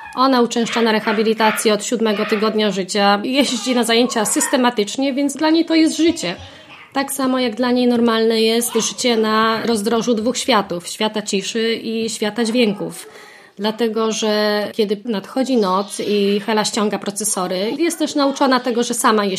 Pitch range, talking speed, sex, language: 220-265 Hz, 160 wpm, female, Polish